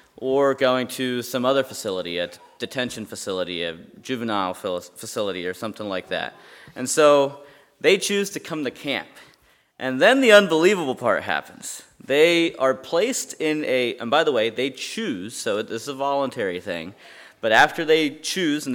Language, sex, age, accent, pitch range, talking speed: English, male, 30-49, American, 115-155 Hz, 165 wpm